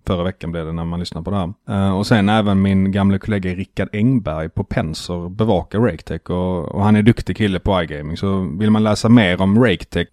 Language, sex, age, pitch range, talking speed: Swedish, male, 30-49, 90-110 Hz, 220 wpm